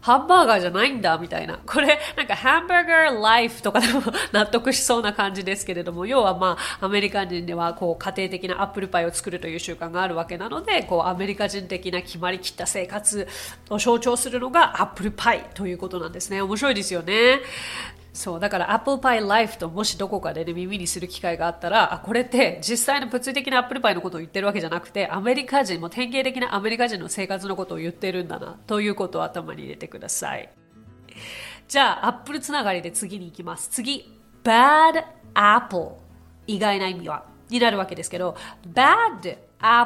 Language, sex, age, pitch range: Japanese, female, 30-49, 185-245 Hz